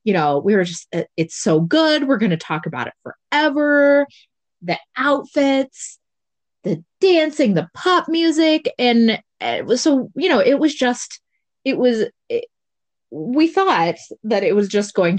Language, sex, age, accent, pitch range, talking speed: English, female, 20-39, American, 155-220 Hz, 160 wpm